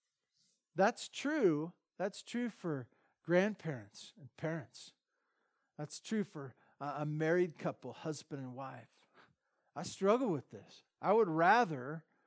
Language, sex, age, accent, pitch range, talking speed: English, male, 50-69, American, 140-175 Hz, 115 wpm